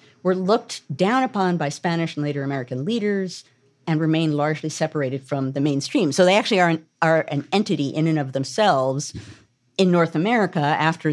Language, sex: English, female